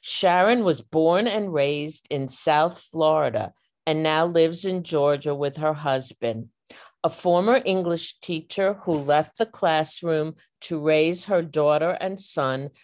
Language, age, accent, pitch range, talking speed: English, 50-69, American, 140-170 Hz, 140 wpm